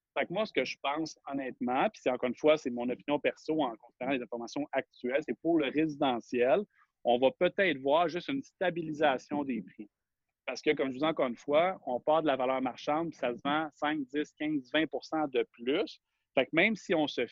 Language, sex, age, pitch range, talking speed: French, male, 30-49, 130-160 Hz, 220 wpm